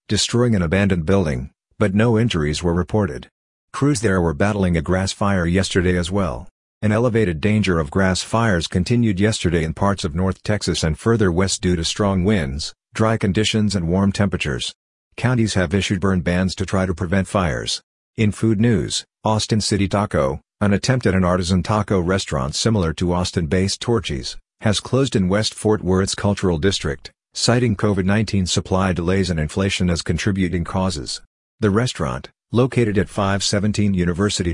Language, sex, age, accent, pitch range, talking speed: English, male, 50-69, American, 90-110 Hz, 165 wpm